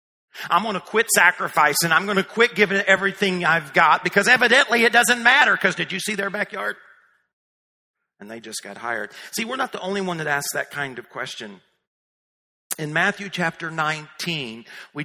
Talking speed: 185 wpm